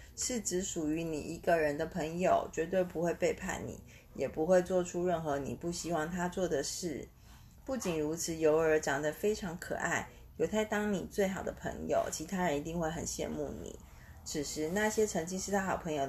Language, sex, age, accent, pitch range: Chinese, female, 30-49, native, 155-200 Hz